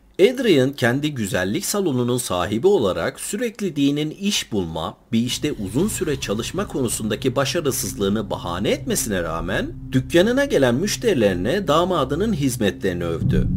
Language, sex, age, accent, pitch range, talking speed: Turkish, male, 50-69, native, 100-150 Hz, 115 wpm